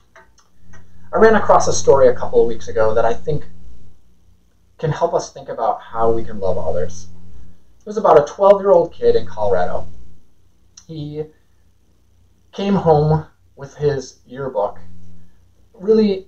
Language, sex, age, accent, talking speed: English, male, 30-49, American, 150 wpm